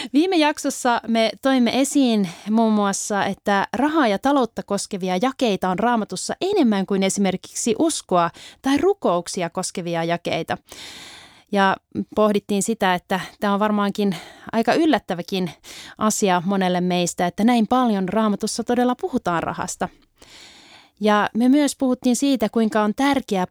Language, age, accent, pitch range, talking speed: Finnish, 30-49, native, 180-245 Hz, 130 wpm